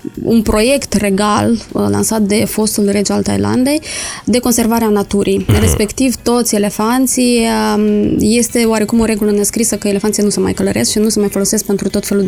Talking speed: 165 wpm